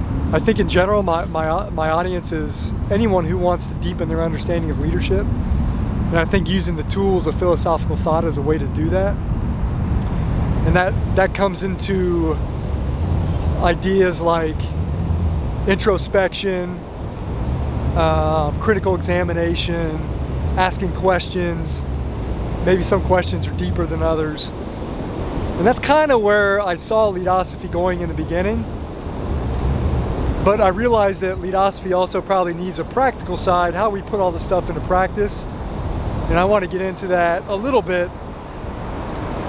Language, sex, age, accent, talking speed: English, male, 20-39, American, 145 wpm